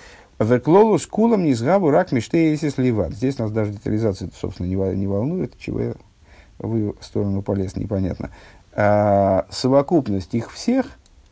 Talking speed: 140 wpm